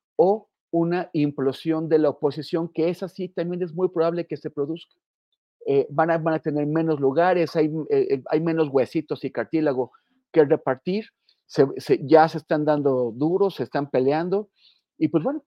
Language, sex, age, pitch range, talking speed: Spanish, male, 40-59, 145-180 Hz, 180 wpm